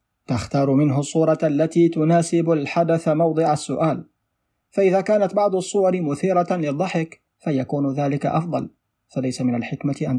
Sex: male